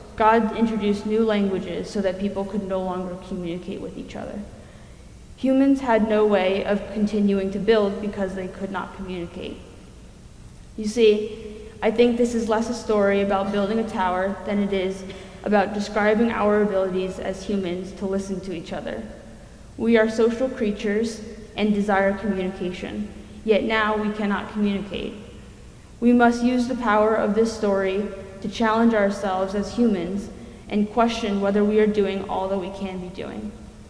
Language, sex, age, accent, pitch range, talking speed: English, female, 20-39, American, 195-220 Hz, 160 wpm